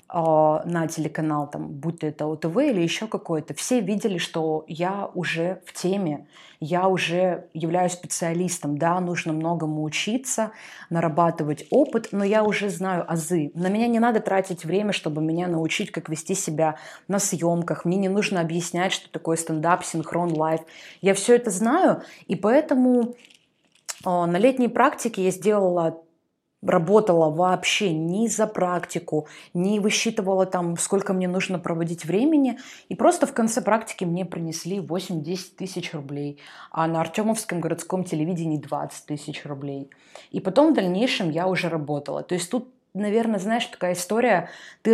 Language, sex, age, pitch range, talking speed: Russian, female, 20-39, 165-200 Hz, 150 wpm